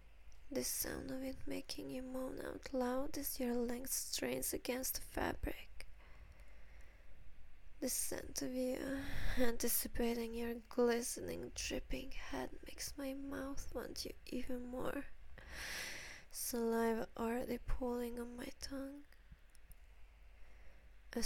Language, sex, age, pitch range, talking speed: English, female, 20-39, 225-260 Hz, 110 wpm